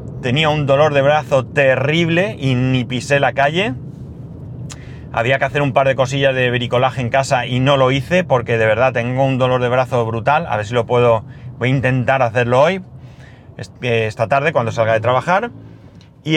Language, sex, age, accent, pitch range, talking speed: Spanish, male, 30-49, Spanish, 110-140 Hz, 190 wpm